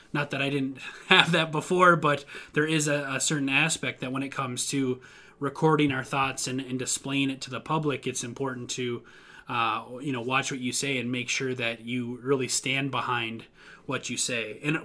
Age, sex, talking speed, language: 20-39, male, 205 wpm, English